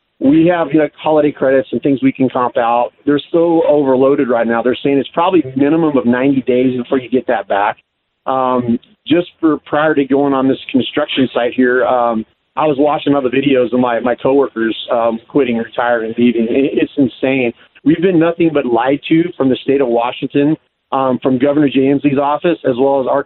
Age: 40-59